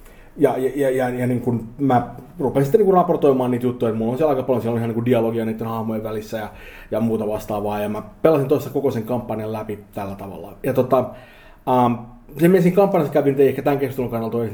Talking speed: 220 wpm